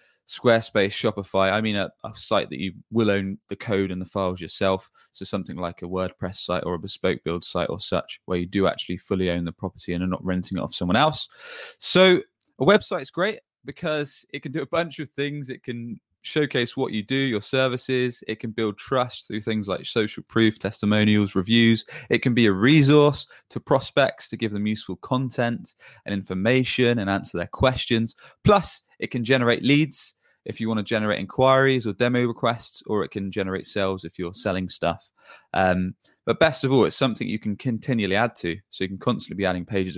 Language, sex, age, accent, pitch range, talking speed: English, male, 20-39, British, 95-125 Hz, 205 wpm